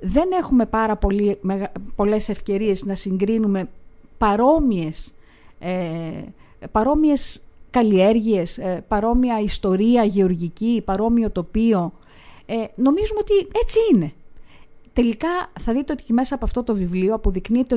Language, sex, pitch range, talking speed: Greek, female, 185-250 Hz, 115 wpm